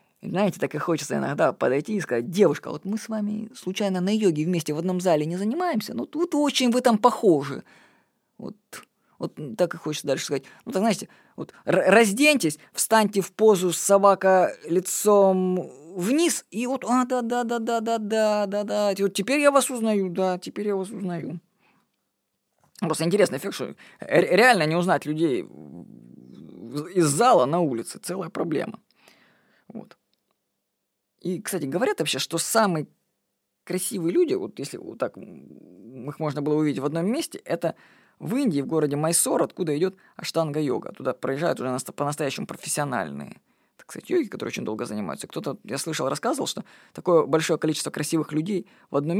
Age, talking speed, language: 20-39, 165 wpm, Russian